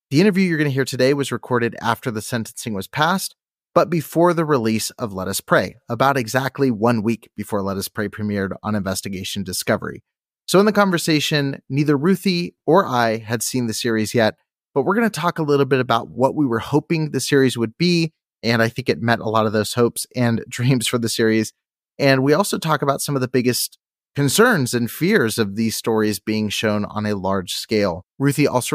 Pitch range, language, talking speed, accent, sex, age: 110-140 Hz, English, 215 wpm, American, male, 30-49